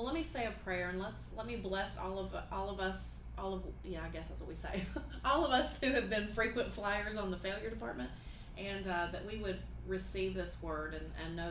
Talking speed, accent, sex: 245 wpm, American, female